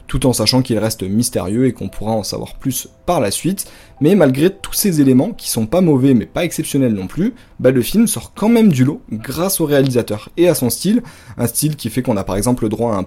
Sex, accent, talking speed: male, French, 255 wpm